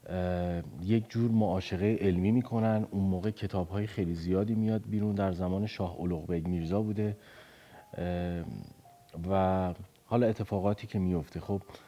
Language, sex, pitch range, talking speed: Persian, male, 90-110 Hz, 120 wpm